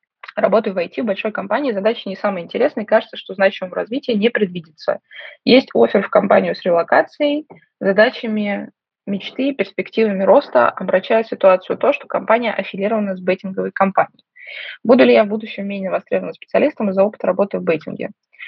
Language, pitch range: Russian, 195-255 Hz